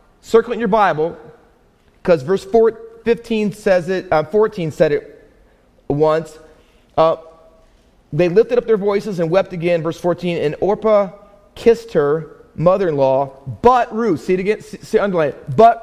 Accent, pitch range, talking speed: American, 155-210 Hz, 155 wpm